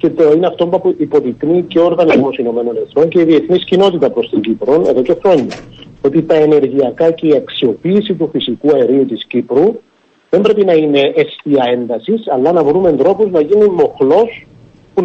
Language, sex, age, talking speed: Greek, male, 50-69, 175 wpm